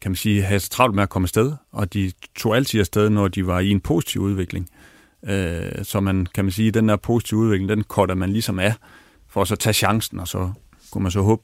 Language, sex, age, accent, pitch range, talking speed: Danish, male, 30-49, native, 95-105 Hz, 240 wpm